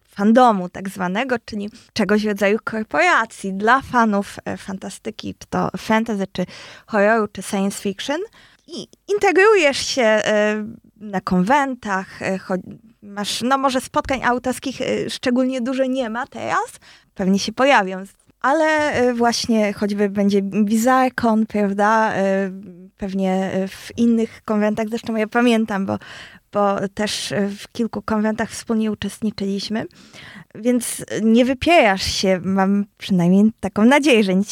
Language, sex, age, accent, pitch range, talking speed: Polish, female, 20-39, native, 200-245 Hz, 120 wpm